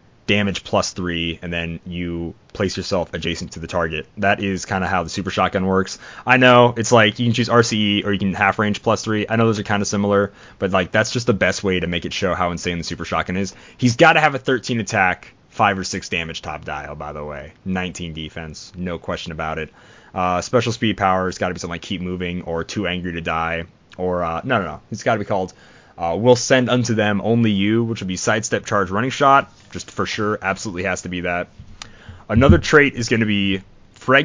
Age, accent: 20-39, American